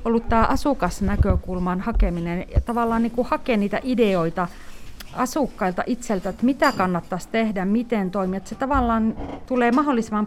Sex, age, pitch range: female, 30-49, 185-235 Hz